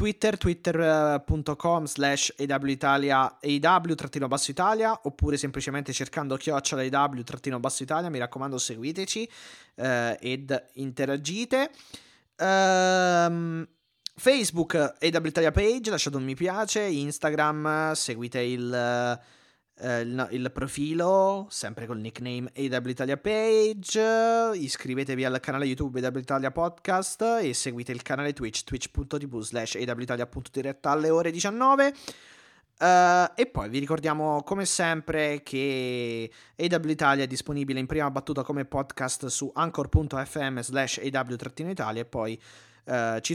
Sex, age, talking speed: male, 20-39, 120 wpm